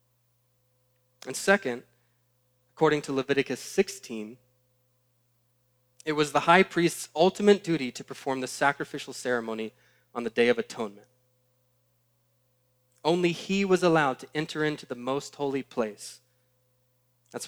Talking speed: 120 wpm